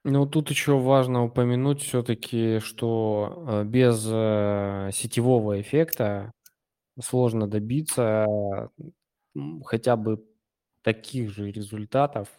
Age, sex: 20-39, male